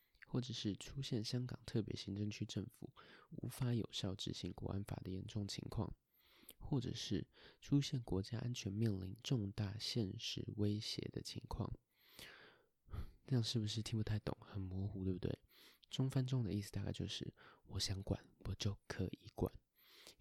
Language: Chinese